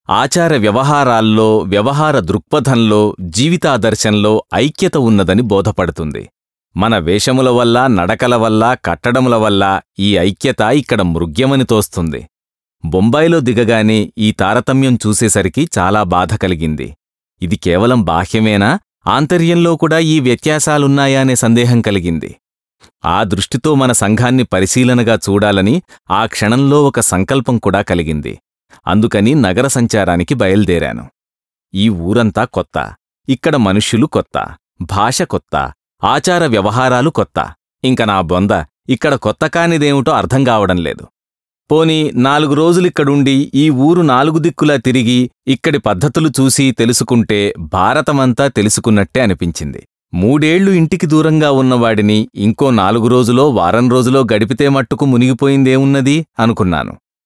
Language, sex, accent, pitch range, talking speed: English, male, Indian, 105-140 Hz, 80 wpm